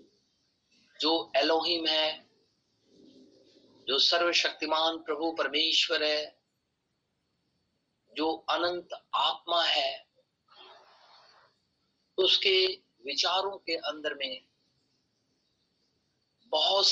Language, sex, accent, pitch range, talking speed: Hindi, male, native, 155-205 Hz, 65 wpm